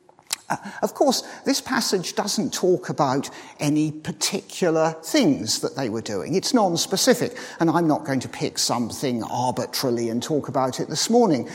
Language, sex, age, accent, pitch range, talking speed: English, male, 50-69, British, 145-215 Hz, 165 wpm